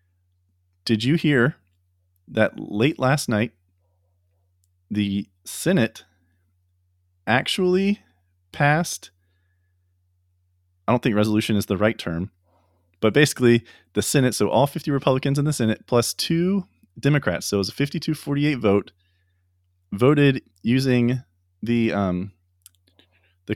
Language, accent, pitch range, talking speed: English, American, 90-120 Hz, 115 wpm